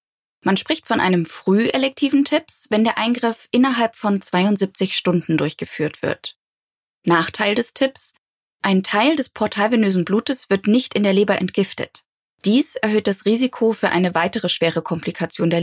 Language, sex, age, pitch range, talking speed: German, female, 20-39, 180-235 Hz, 150 wpm